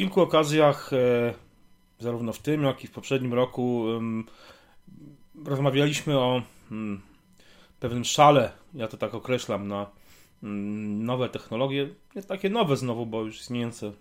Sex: male